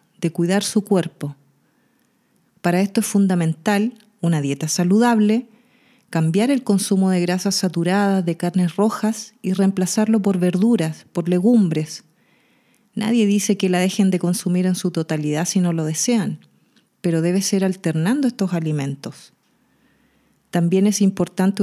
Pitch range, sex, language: 175-215 Hz, female, Spanish